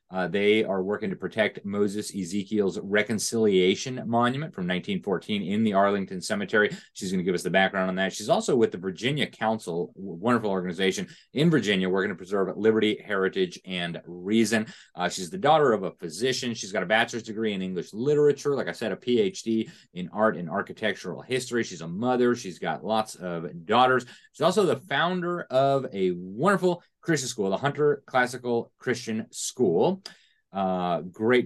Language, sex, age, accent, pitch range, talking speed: English, male, 30-49, American, 95-140 Hz, 175 wpm